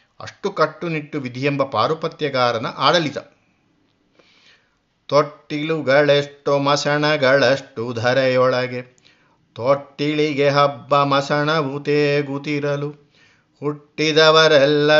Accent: native